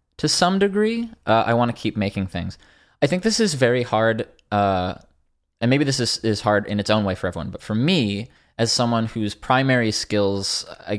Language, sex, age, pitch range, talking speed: English, male, 20-39, 95-115 Hz, 205 wpm